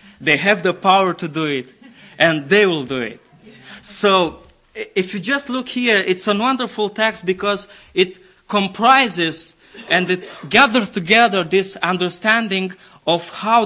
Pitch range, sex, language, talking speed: 185-245 Hz, male, English, 145 wpm